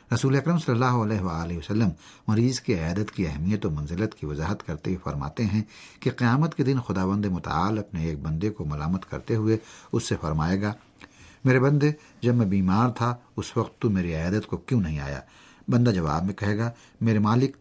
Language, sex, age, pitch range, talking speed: Urdu, male, 60-79, 90-115 Hz, 205 wpm